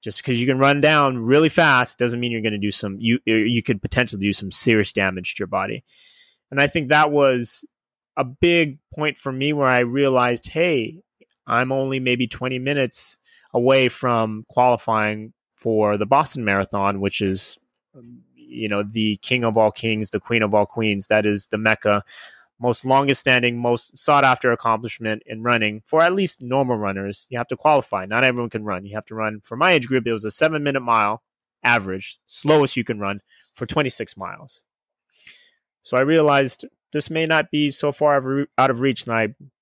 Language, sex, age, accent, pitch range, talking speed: English, male, 30-49, American, 110-145 Hz, 195 wpm